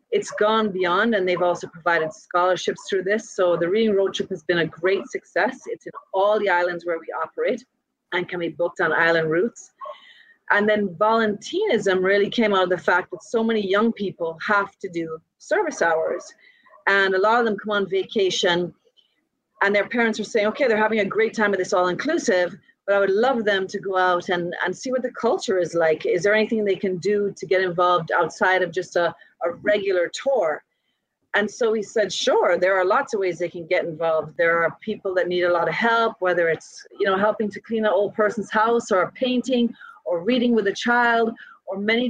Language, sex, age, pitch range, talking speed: English, female, 30-49, 180-220 Hz, 220 wpm